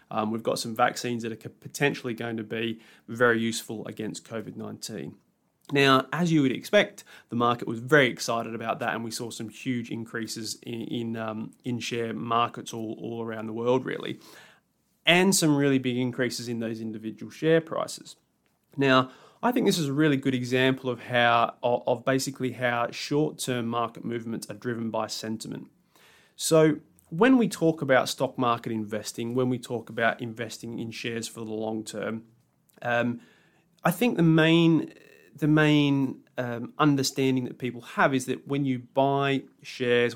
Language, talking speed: English, 165 wpm